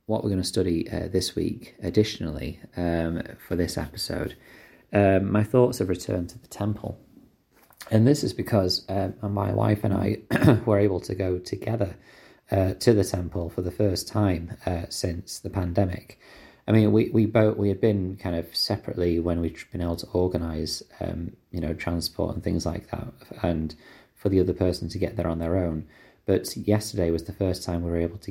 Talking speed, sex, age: 195 wpm, male, 30-49